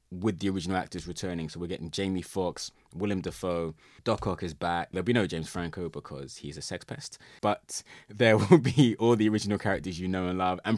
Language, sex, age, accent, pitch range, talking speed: English, male, 20-39, British, 85-105 Hz, 215 wpm